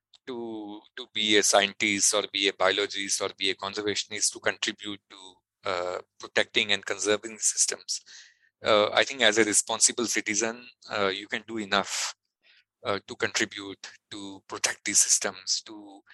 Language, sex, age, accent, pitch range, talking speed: Telugu, male, 20-39, native, 95-110 Hz, 155 wpm